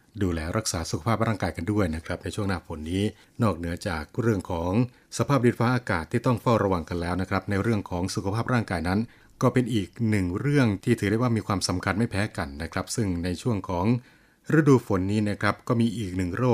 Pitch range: 95-120 Hz